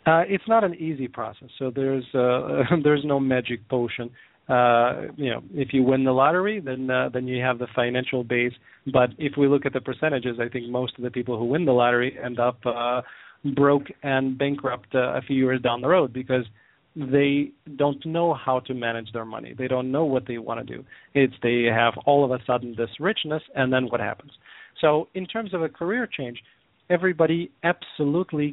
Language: English